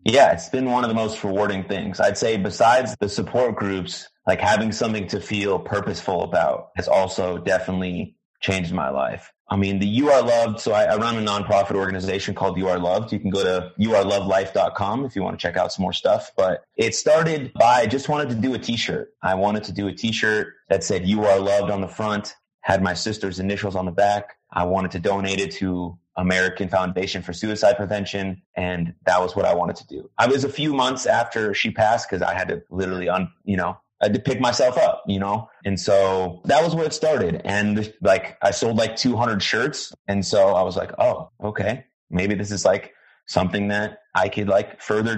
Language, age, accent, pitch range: English, 30-49, American, 95-110 Hz